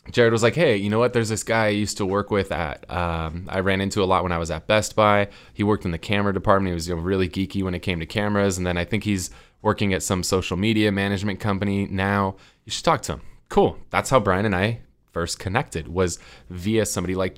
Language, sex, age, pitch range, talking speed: English, male, 20-39, 90-110 Hz, 250 wpm